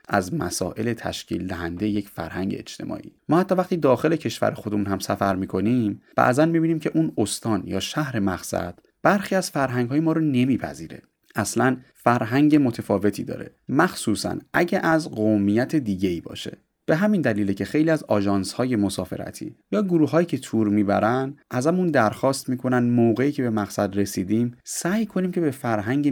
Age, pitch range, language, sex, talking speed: 30-49, 100-150 Hz, Persian, male, 155 wpm